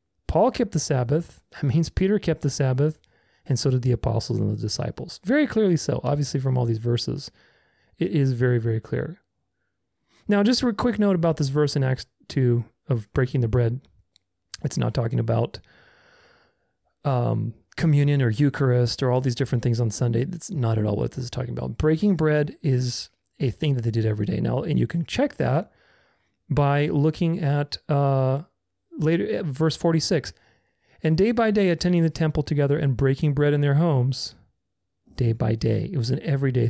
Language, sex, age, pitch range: English, male, 30-49, 125-160 Hz